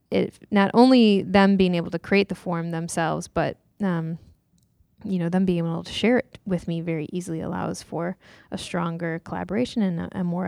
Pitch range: 170-200 Hz